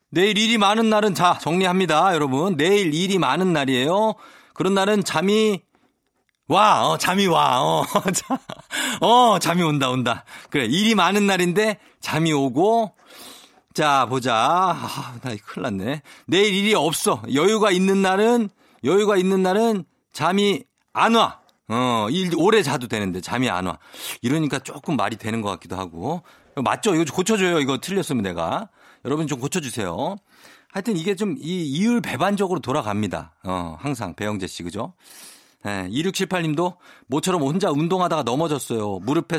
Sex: male